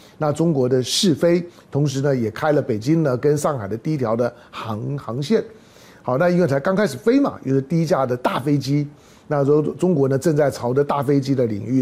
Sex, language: male, Chinese